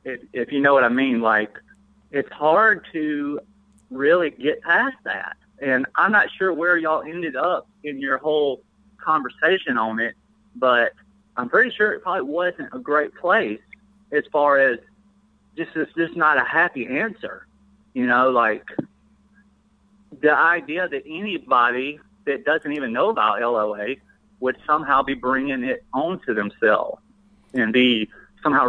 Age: 40-59